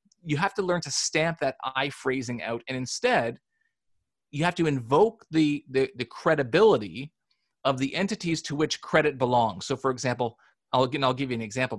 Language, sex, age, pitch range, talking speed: English, male, 30-49, 125-165 Hz, 185 wpm